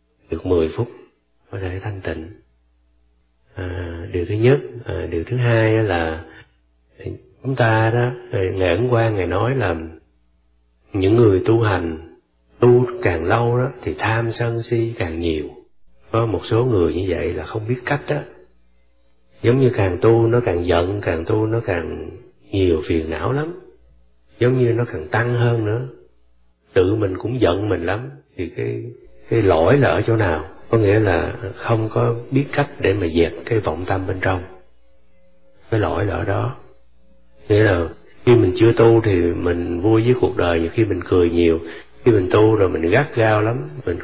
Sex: male